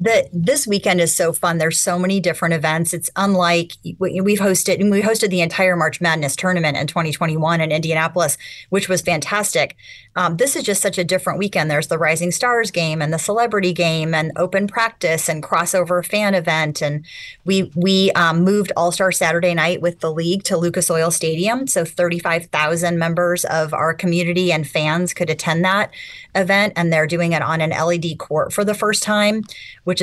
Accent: American